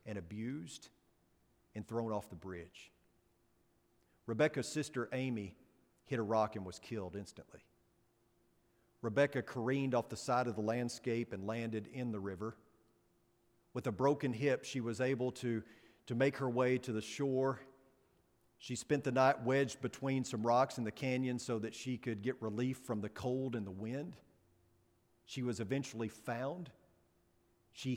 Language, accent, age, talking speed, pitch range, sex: English, American, 40-59, 155 wpm, 110-140 Hz, male